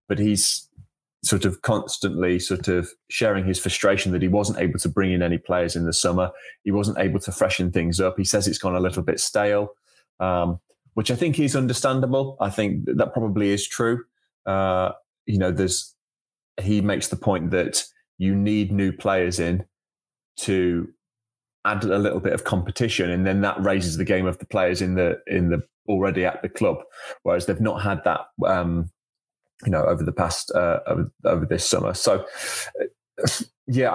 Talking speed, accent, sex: 185 wpm, British, male